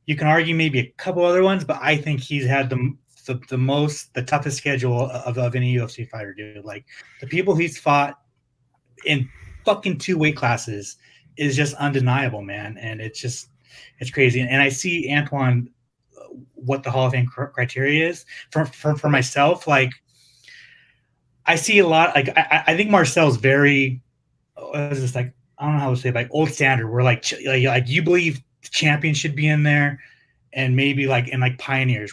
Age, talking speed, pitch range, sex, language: 30-49, 195 wpm, 125-155 Hz, male, English